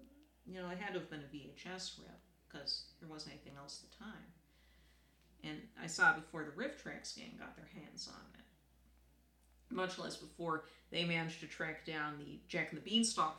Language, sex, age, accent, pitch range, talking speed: English, female, 40-59, American, 120-195 Hz, 200 wpm